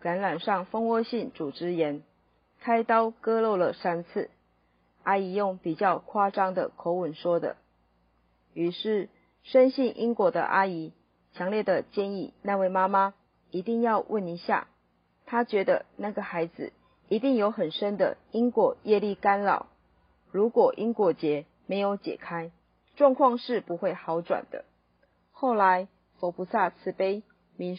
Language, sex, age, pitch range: Chinese, female, 40-59, 175-220 Hz